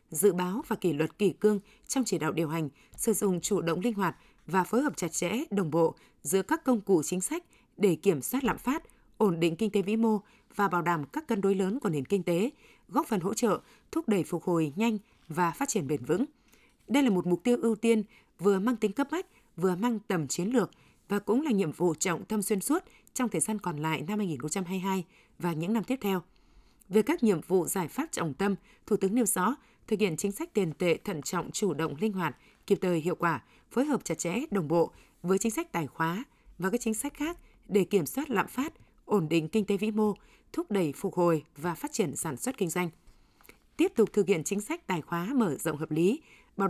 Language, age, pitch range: Vietnamese, 20-39, 175-225 Hz